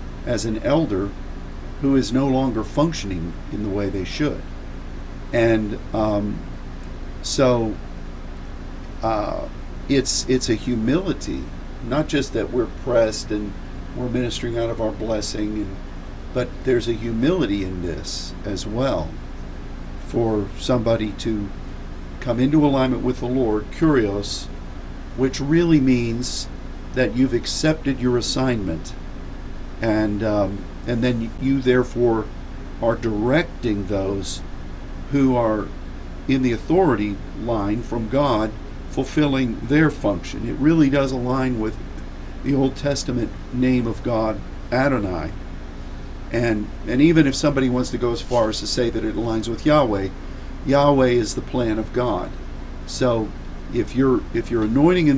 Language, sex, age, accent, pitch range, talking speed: English, male, 50-69, American, 80-125 Hz, 135 wpm